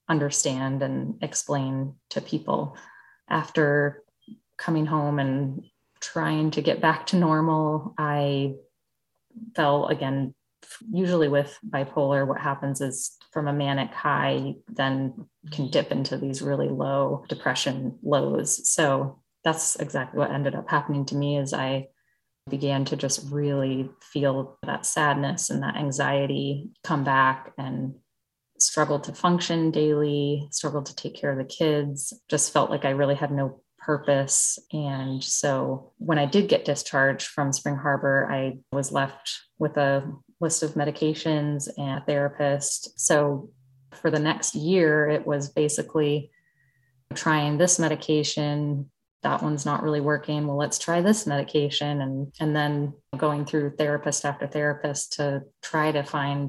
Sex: female